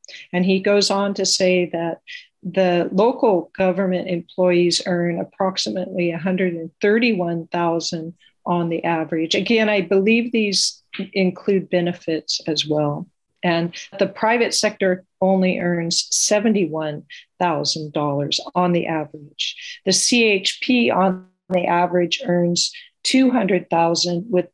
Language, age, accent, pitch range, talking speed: English, 50-69, American, 170-195 Hz, 105 wpm